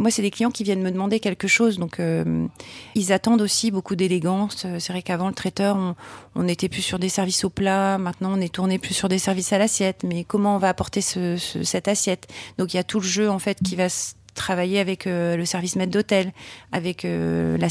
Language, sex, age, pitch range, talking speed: French, female, 40-59, 180-205 Hz, 240 wpm